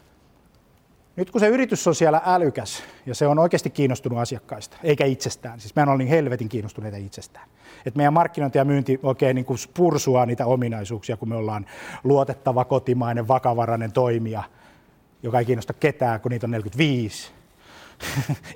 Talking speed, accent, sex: 145 wpm, native, male